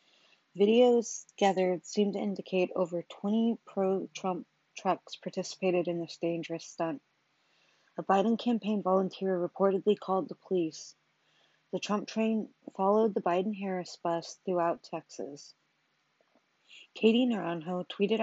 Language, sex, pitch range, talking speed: English, female, 175-205 Hz, 110 wpm